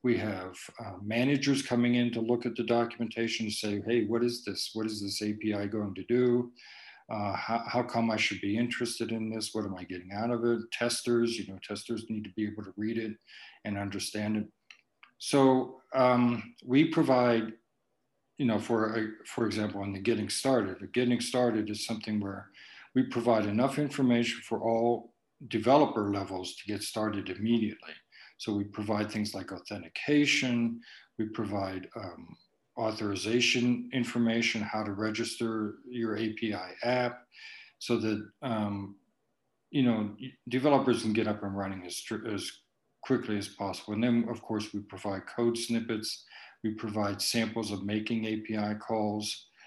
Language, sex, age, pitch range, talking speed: English, male, 50-69, 105-120 Hz, 165 wpm